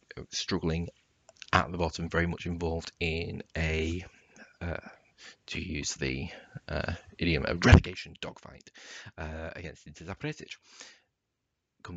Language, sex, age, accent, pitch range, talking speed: English, male, 30-49, British, 80-95 Hz, 115 wpm